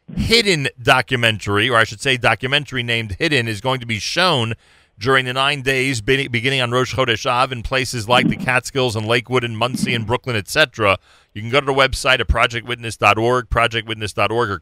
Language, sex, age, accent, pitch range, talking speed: English, male, 40-59, American, 110-140 Hz, 185 wpm